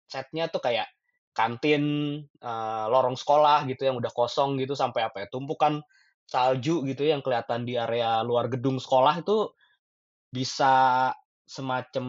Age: 20-39